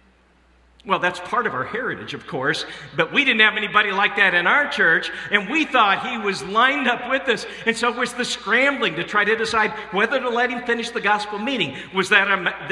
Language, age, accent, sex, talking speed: English, 50-69, American, male, 215 wpm